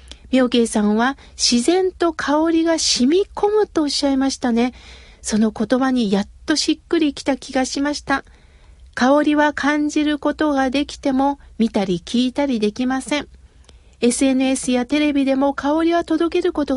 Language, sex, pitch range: Japanese, female, 245-300 Hz